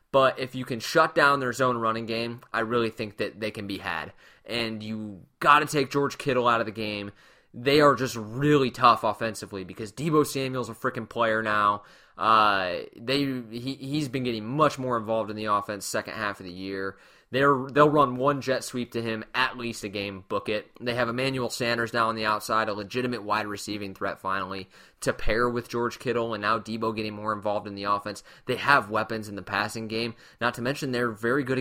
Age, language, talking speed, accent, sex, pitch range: 20-39, English, 215 wpm, American, male, 110-135 Hz